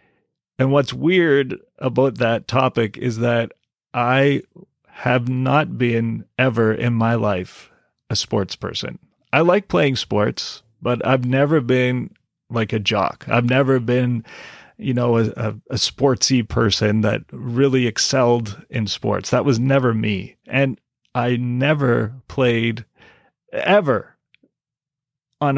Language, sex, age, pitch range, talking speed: English, male, 30-49, 115-130 Hz, 125 wpm